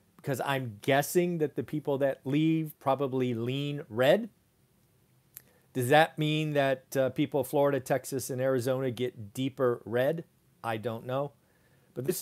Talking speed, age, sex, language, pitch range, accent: 145 wpm, 40-59, male, English, 125-160 Hz, American